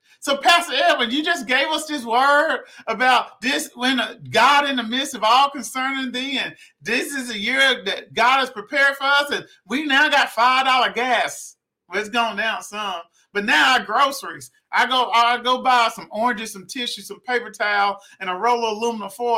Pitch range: 225-280 Hz